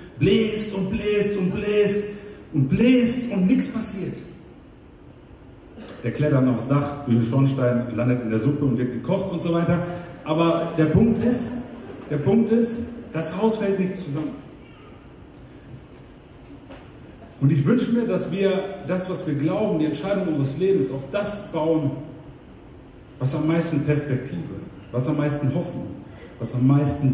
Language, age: German, 40-59